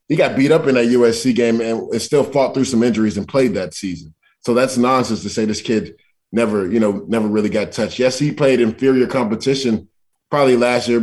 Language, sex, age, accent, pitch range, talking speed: English, male, 20-39, American, 105-130 Hz, 220 wpm